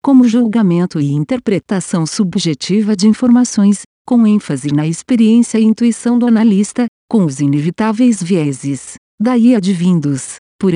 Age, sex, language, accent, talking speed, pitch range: 50-69, female, Portuguese, Brazilian, 125 wpm, 160-225 Hz